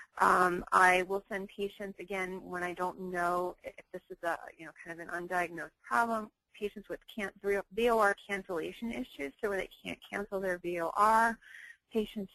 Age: 30-49